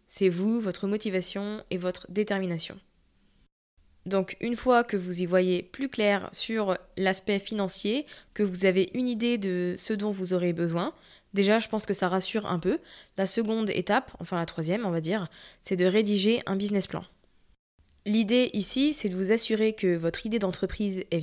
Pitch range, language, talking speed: 180-210 Hz, French, 180 wpm